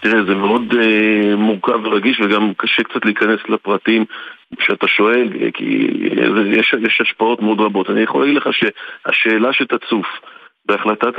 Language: Hebrew